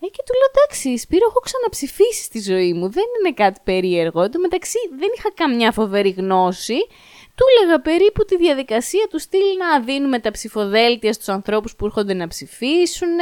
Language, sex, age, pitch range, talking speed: Greek, female, 20-39, 190-285 Hz, 175 wpm